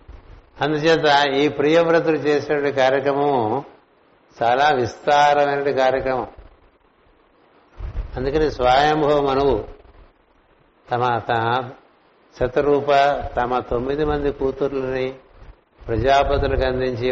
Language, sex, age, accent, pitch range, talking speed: Telugu, male, 60-79, native, 95-140 Hz, 70 wpm